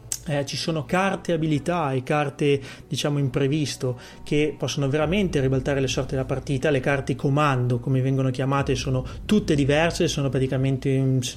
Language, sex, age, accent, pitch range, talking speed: Italian, male, 30-49, native, 130-145 Hz, 155 wpm